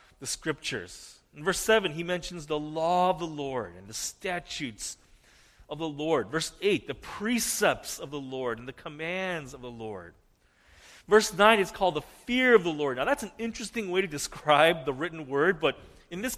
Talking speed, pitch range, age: 195 wpm, 125-190 Hz, 40-59